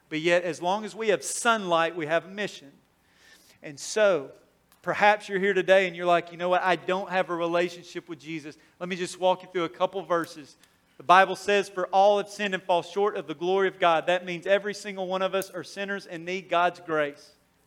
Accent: American